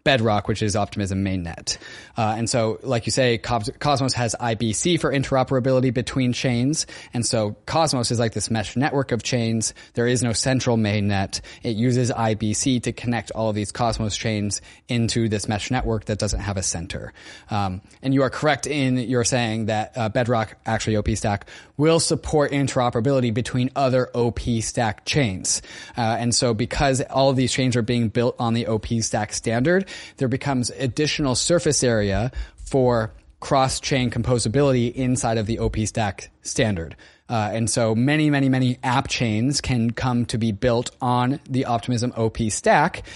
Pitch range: 110-135 Hz